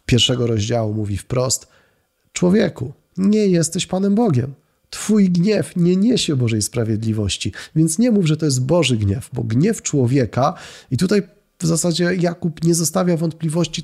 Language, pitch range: Polish, 115-160 Hz